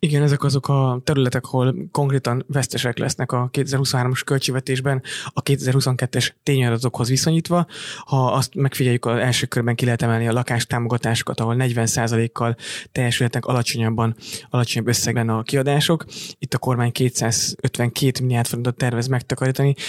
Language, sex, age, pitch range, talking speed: Hungarian, male, 20-39, 120-135 Hz, 130 wpm